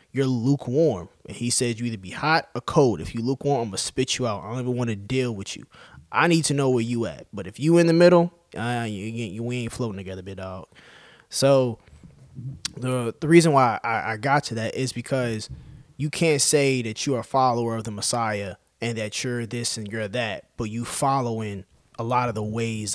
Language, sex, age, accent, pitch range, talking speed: English, male, 20-39, American, 110-135 Hz, 235 wpm